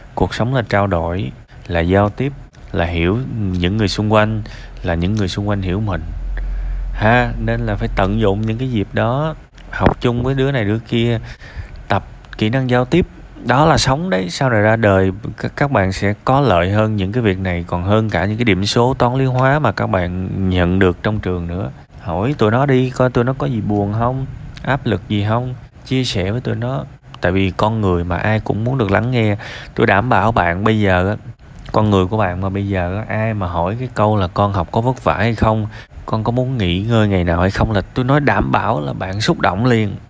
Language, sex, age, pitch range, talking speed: Vietnamese, male, 20-39, 95-125 Hz, 230 wpm